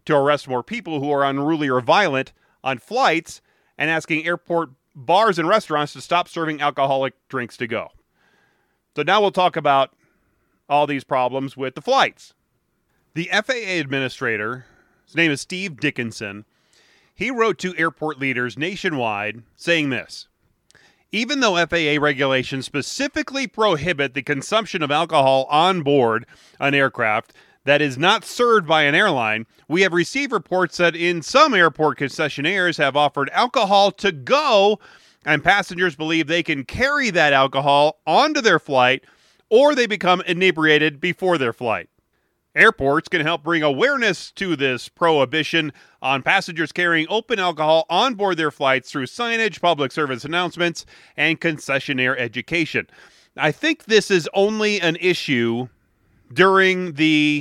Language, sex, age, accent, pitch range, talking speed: English, male, 30-49, American, 135-185 Hz, 145 wpm